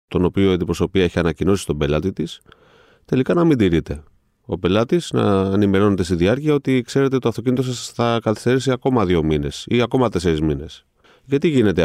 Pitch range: 90-120 Hz